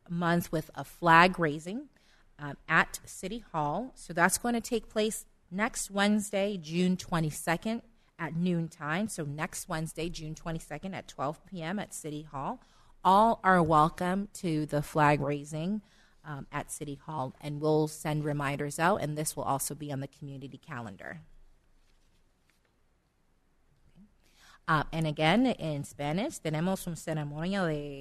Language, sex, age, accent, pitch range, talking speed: English, female, 30-49, American, 145-195 Hz, 145 wpm